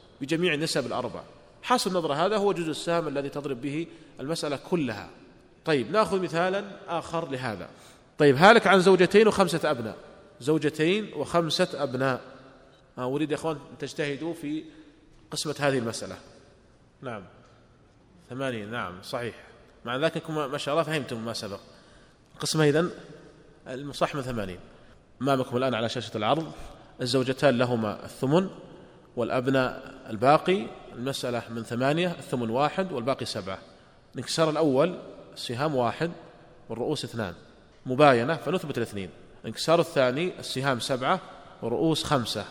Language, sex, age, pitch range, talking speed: Arabic, male, 30-49, 125-160 Hz, 120 wpm